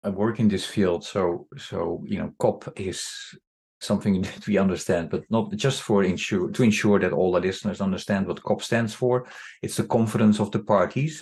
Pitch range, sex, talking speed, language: 90-120 Hz, male, 200 wpm, English